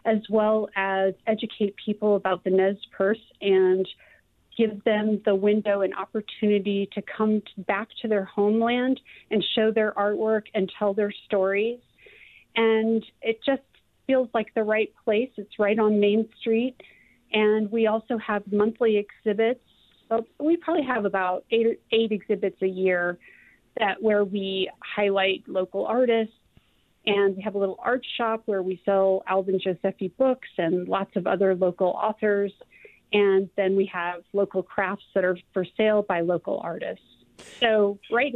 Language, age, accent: English, 30-49, American